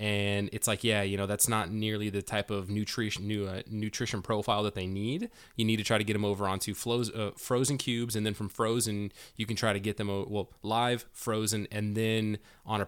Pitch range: 100-110 Hz